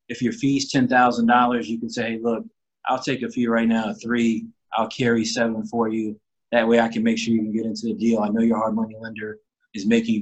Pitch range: 110-125 Hz